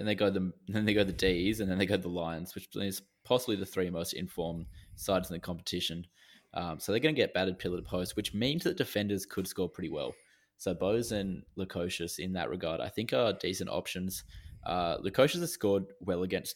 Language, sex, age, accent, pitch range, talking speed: English, male, 20-39, Australian, 90-105 Hz, 230 wpm